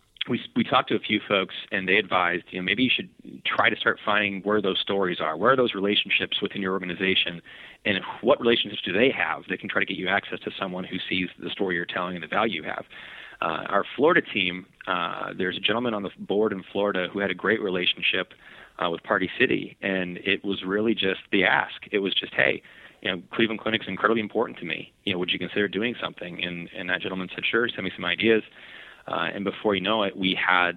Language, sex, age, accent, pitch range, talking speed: English, male, 30-49, American, 90-105 Hz, 240 wpm